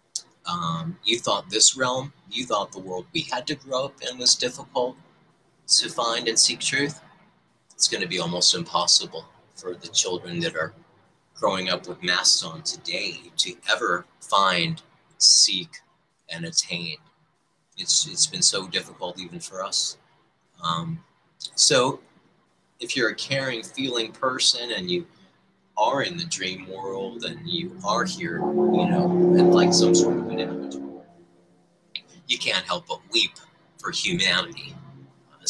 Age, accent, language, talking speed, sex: 30-49, American, English, 150 wpm, male